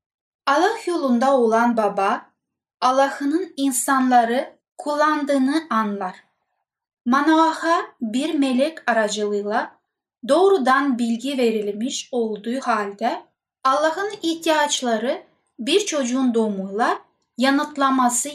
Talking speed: 75 wpm